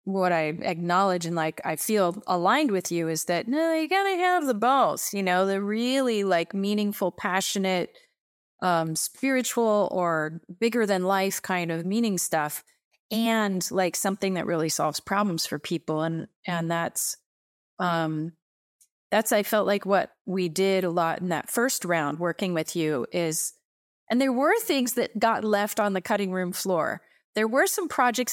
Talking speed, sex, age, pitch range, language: 170 wpm, female, 30-49, 180-235 Hz, English